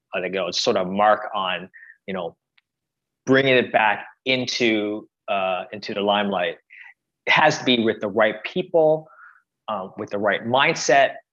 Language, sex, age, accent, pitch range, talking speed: English, male, 20-39, American, 105-135 Hz, 175 wpm